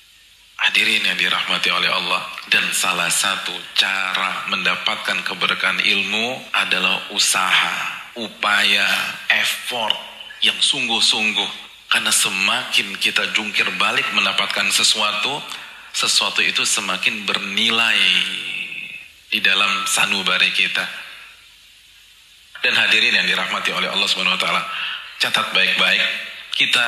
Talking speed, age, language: 100 wpm, 40-59, Indonesian